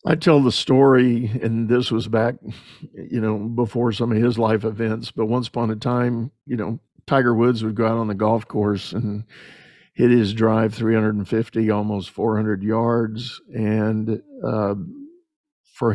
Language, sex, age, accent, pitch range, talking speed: English, male, 50-69, American, 115-140 Hz, 160 wpm